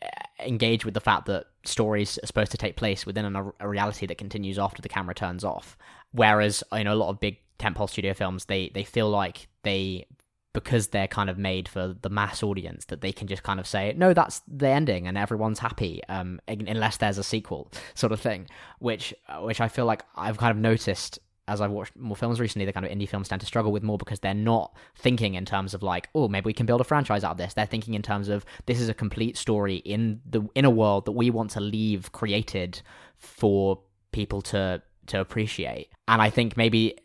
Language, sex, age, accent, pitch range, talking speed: English, male, 10-29, British, 100-115 Hz, 225 wpm